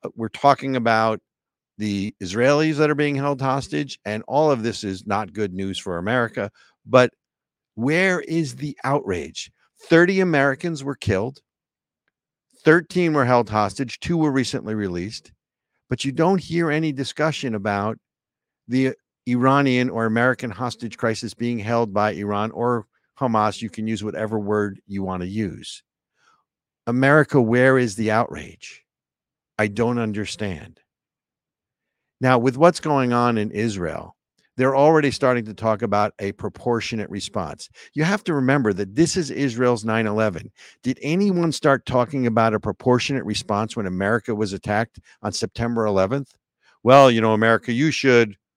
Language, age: English, 50-69